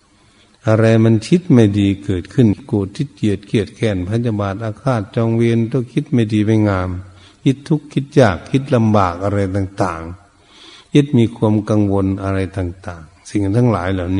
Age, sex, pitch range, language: 60-79, male, 100-120 Hz, Thai